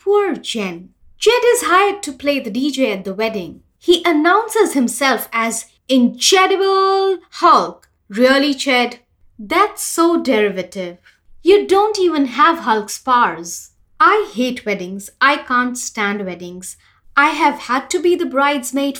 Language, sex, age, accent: English, female, 20-39, Indian